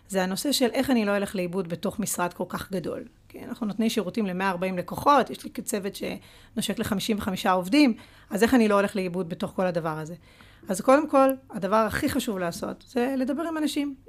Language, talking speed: Hebrew, 195 wpm